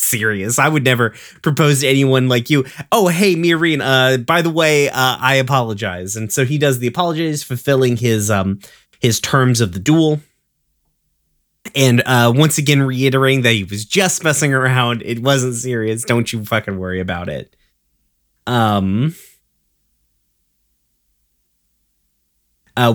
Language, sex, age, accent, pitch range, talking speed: English, male, 30-49, American, 110-150 Hz, 145 wpm